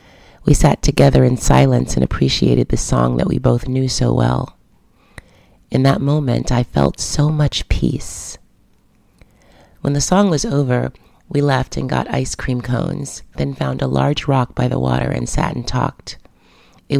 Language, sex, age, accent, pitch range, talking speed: English, female, 30-49, American, 100-140 Hz, 170 wpm